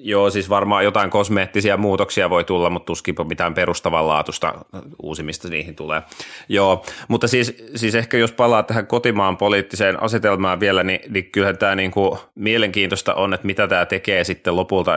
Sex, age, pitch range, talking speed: male, 30-49, 90-105 Hz, 165 wpm